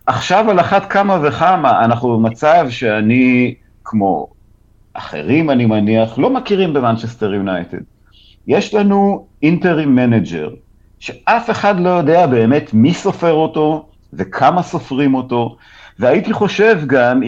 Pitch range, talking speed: 115-180 Hz, 120 wpm